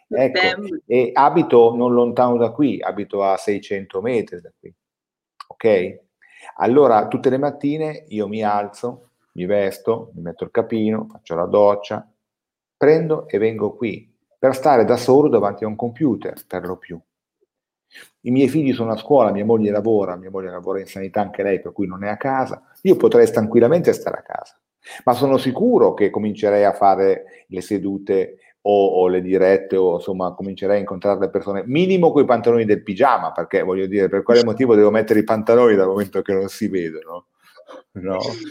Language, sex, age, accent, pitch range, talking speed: Italian, male, 40-59, native, 100-155 Hz, 180 wpm